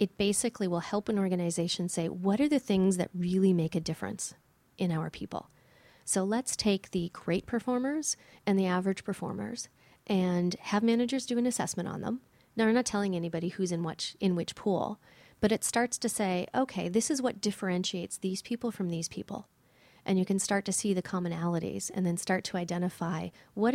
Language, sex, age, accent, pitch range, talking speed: English, female, 30-49, American, 175-205 Hz, 195 wpm